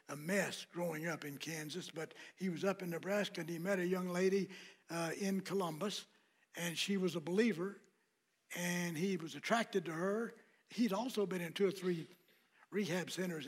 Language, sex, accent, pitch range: English, male, American, 175-210 Hz